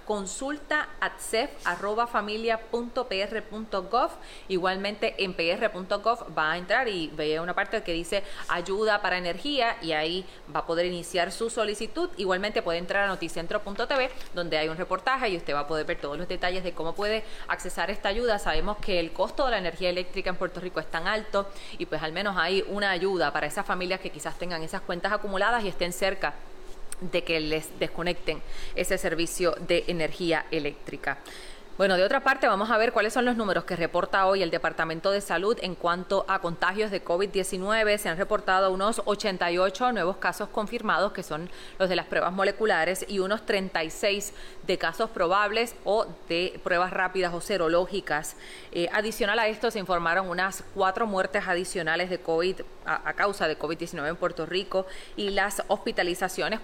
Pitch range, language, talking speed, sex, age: 175-210 Hz, English, 175 wpm, female, 20-39